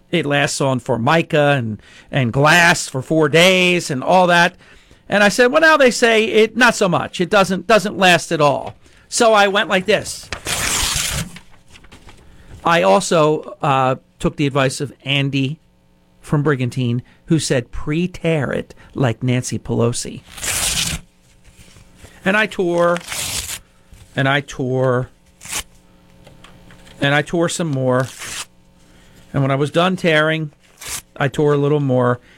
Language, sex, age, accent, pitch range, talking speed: English, male, 50-69, American, 115-185 Hz, 135 wpm